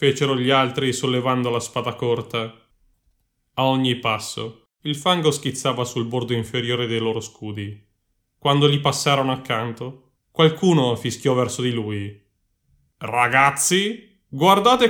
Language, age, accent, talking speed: Italian, 20-39, native, 120 wpm